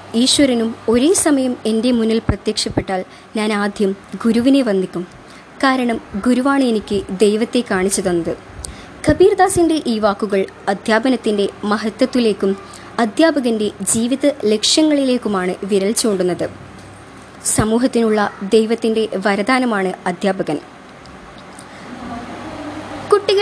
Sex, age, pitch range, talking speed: male, 20-39, 205-270 Hz, 80 wpm